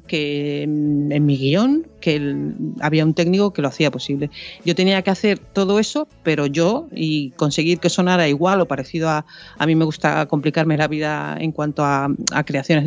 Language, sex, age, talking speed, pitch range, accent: Spanish, female, 40-59, 195 wpm, 150-200 Hz, Spanish